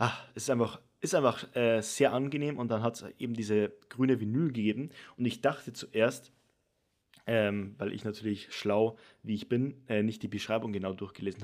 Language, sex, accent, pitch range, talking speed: German, male, German, 105-125 Hz, 185 wpm